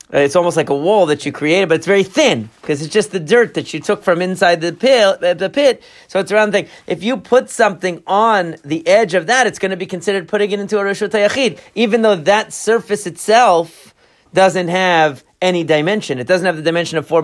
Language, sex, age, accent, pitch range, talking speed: English, male, 40-59, American, 170-215 Hz, 225 wpm